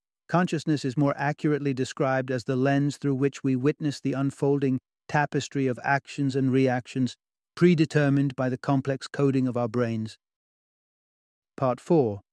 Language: English